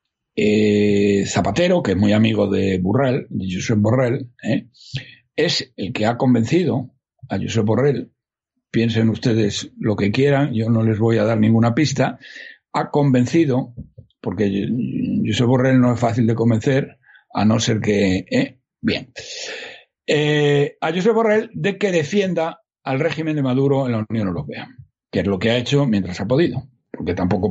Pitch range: 110-165 Hz